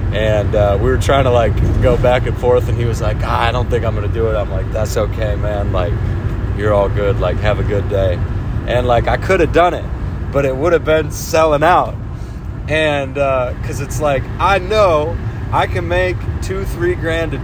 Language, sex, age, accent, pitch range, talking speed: English, male, 30-49, American, 95-120 Hz, 225 wpm